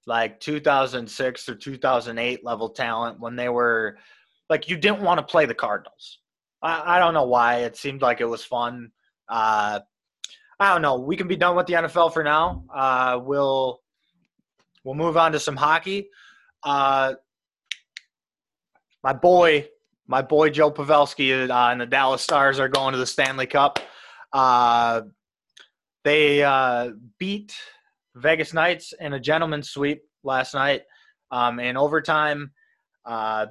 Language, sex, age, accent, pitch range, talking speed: English, male, 20-39, American, 125-155 Hz, 150 wpm